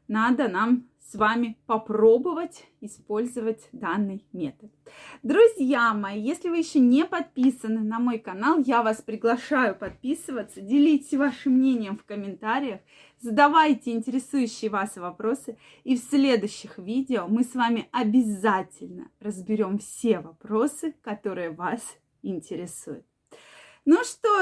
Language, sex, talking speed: Russian, female, 115 wpm